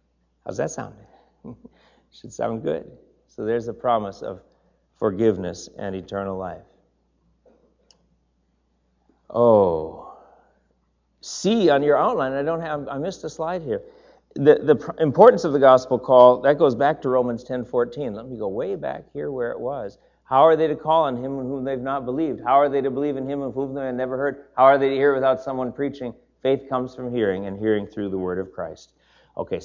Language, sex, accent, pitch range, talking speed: English, male, American, 105-140 Hz, 195 wpm